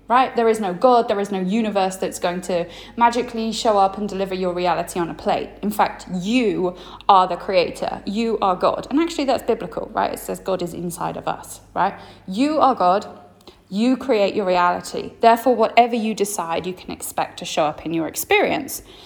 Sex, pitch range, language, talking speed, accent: female, 185-255 Hz, English, 200 wpm, British